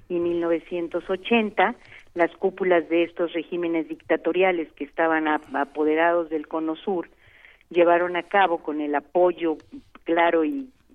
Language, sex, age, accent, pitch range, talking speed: Spanish, female, 50-69, Mexican, 155-185 Hz, 125 wpm